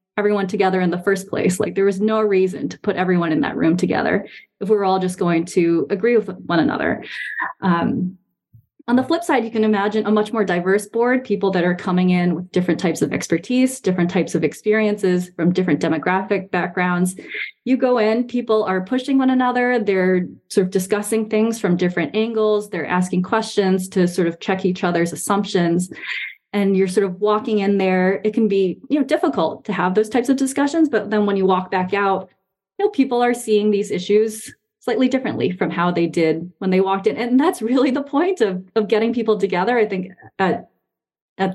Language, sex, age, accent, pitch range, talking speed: English, female, 20-39, American, 180-220 Hz, 205 wpm